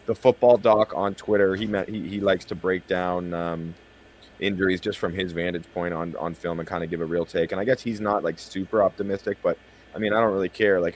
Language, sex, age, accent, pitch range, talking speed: English, male, 30-49, American, 95-115 Hz, 250 wpm